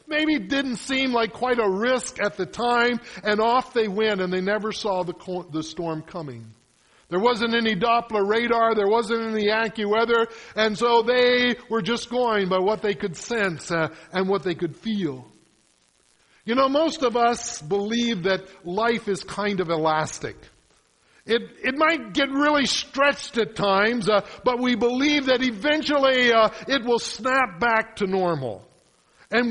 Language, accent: English, American